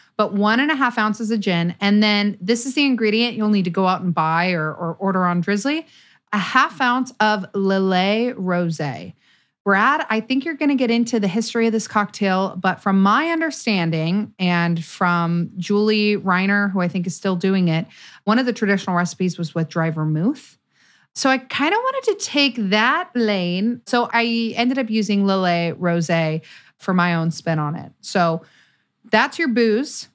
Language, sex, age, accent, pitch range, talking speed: English, female, 30-49, American, 185-240 Hz, 190 wpm